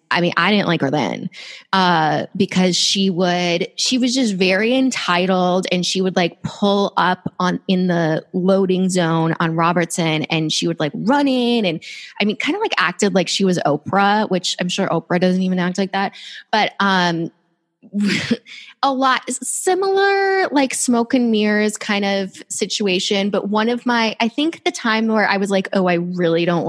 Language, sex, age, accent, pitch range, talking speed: English, female, 20-39, American, 175-220 Hz, 185 wpm